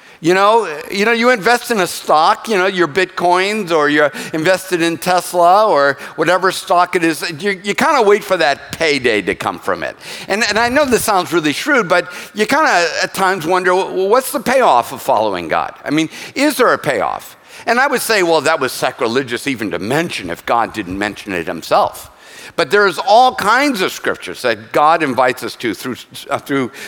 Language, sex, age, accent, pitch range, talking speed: English, male, 50-69, American, 155-215 Hz, 210 wpm